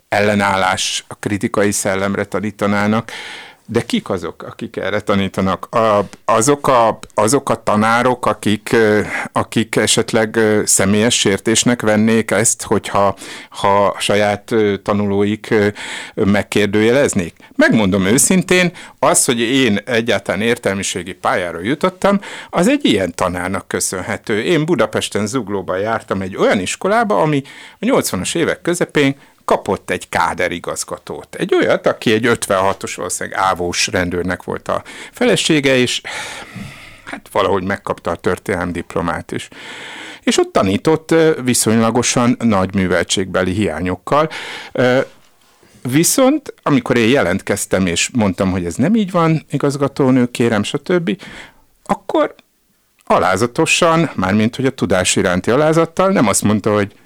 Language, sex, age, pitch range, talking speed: Hungarian, male, 60-79, 105-150 Hz, 115 wpm